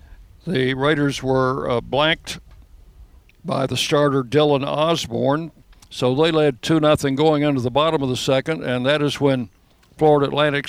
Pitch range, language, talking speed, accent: 120-150 Hz, English, 150 wpm, American